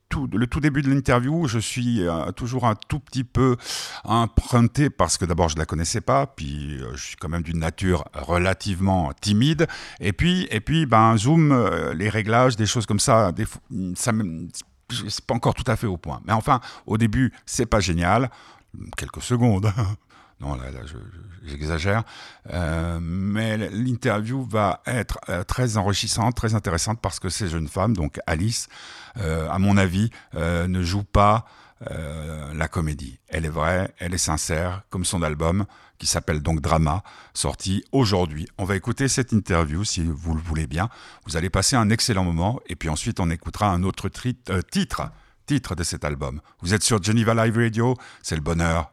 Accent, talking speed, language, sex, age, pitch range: French, 185 wpm, French, male, 50-69, 85-115 Hz